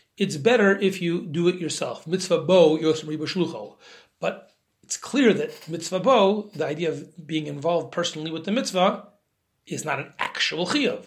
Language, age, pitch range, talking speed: English, 40-59, 160-205 Hz, 165 wpm